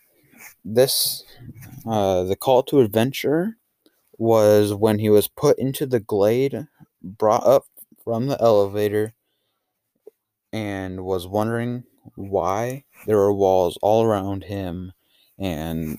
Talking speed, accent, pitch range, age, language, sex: 115 wpm, American, 95-115 Hz, 20-39, English, male